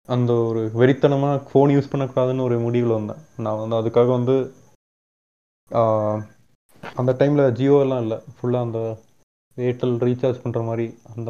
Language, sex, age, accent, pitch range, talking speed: Tamil, male, 20-39, native, 115-135 Hz, 135 wpm